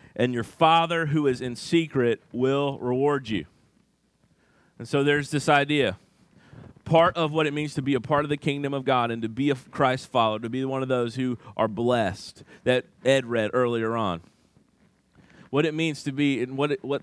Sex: male